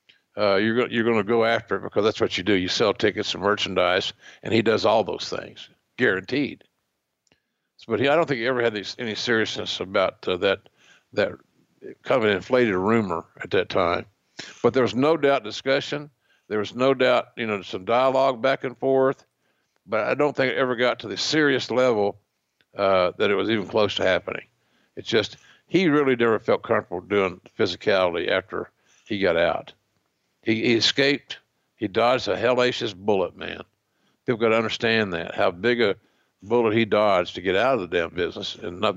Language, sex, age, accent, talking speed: English, male, 60-79, American, 195 wpm